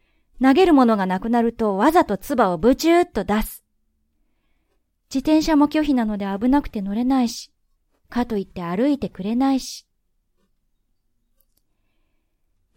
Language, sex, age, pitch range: Japanese, female, 20-39, 215-295 Hz